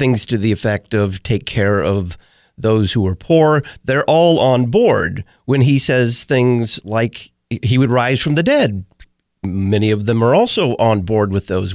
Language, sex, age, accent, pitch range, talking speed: English, male, 40-59, American, 105-140 Hz, 185 wpm